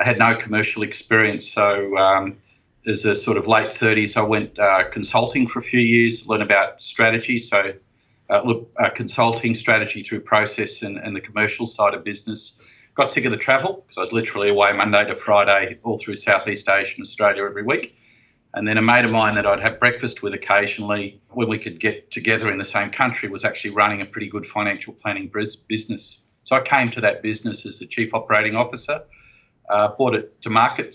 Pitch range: 105-120 Hz